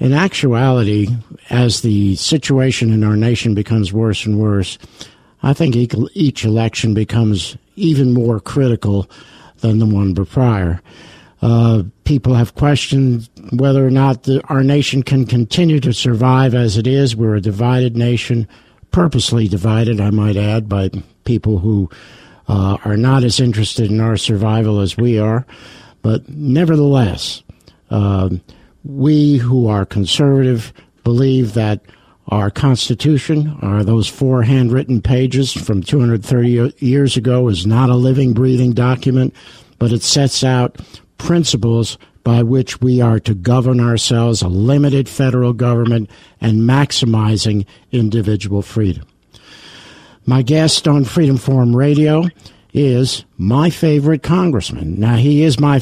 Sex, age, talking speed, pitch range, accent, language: male, 60-79, 130 wpm, 110-135 Hz, American, English